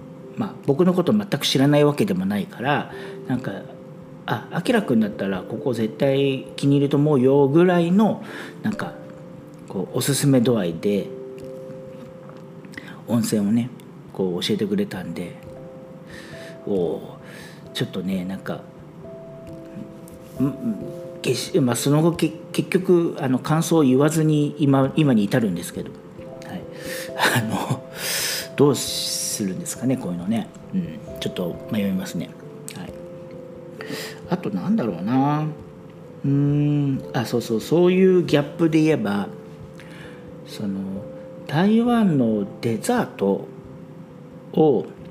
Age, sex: 40-59, male